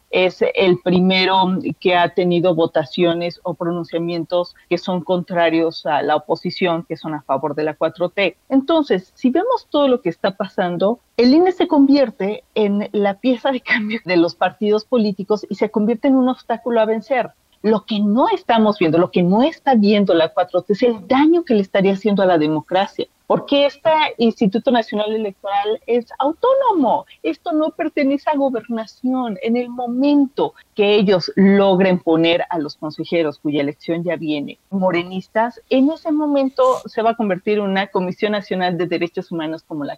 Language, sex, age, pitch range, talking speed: Spanish, female, 40-59, 175-240 Hz, 175 wpm